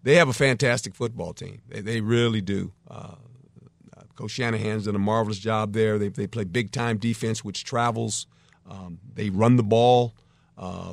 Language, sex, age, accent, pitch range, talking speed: English, male, 50-69, American, 110-140 Hz, 175 wpm